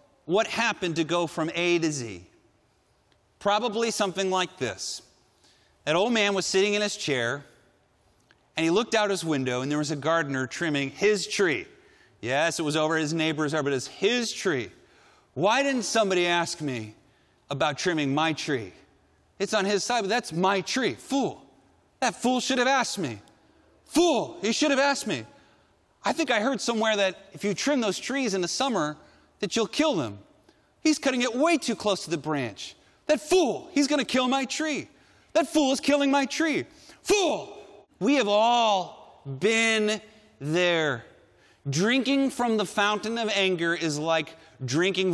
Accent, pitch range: American, 160-245 Hz